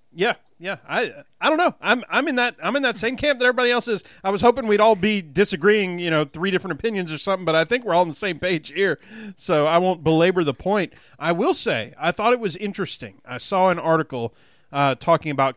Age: 30-49